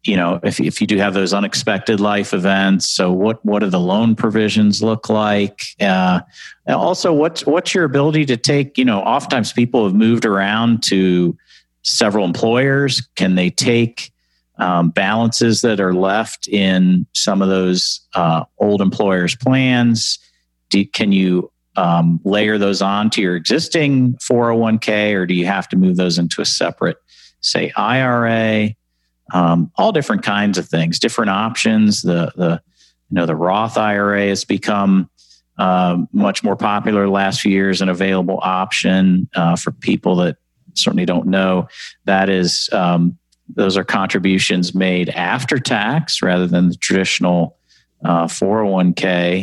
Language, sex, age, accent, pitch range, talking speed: English, male, 50-69, American, 90-115 Hz, 160 wpm